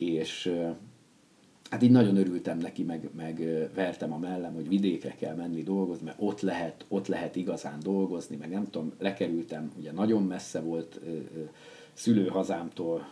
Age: 50-69